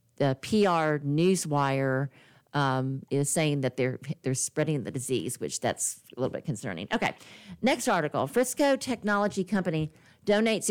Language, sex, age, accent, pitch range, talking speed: English, female, 50-69, American, 150-195 Hz, 140 wpm